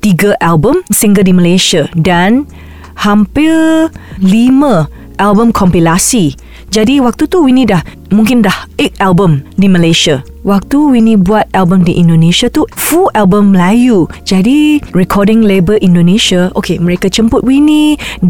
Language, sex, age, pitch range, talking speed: Malay, female, 20-39, 180-240 Hz, 130 wpm